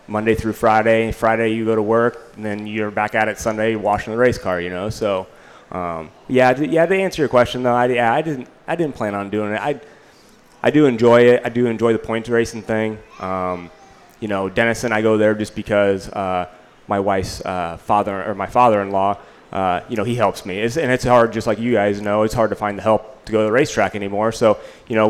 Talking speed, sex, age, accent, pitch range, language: 240 wpm, male, 20-39, American, 105-120 Hz, English